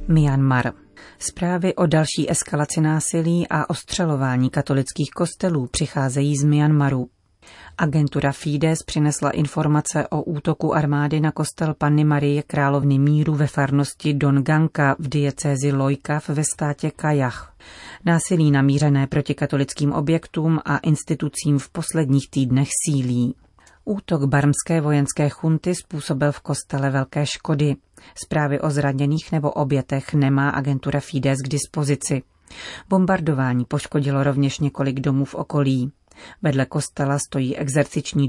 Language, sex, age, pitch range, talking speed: Czech, female, 30-49, 140-155 Hz, 120 wpm